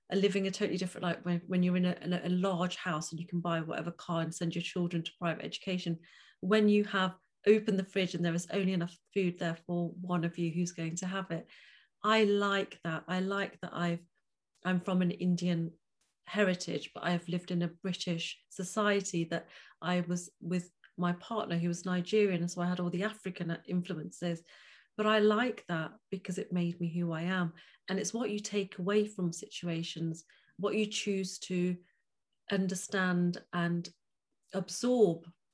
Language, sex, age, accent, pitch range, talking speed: English, female, 40-59, British, 175-205 Hz, 190 wpm